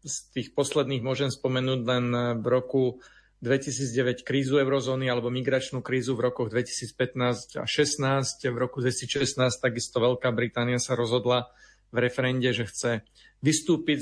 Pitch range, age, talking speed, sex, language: 125-135 Hz, 40-59, 135 wpm, male, Slovak